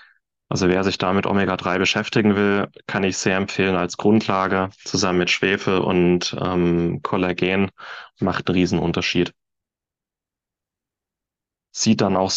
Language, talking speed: German, 120 wpm